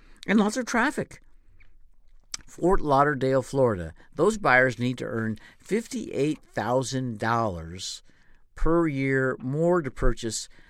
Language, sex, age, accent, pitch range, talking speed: English, male, 50-69, American, 110-145 Hz, 100 wpm